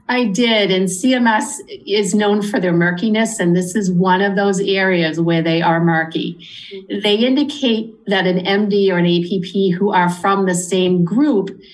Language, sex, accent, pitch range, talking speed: English, female, American, 175-215 Hz, 175 wpm